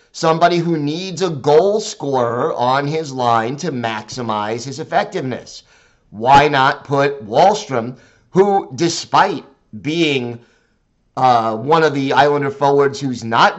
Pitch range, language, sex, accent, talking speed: 125-165 Hz, English, male, American, 125 wpm